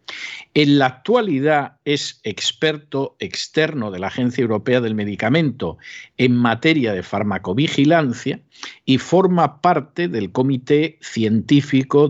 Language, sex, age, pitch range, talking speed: Spanish, male, 50-69, 105-145 Hz, 110 wpm